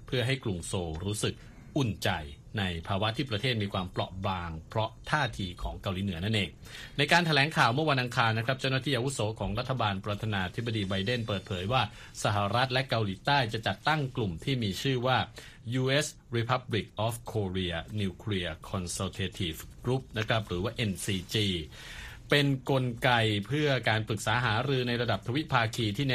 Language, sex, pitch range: Thai, male, 100-130 Hz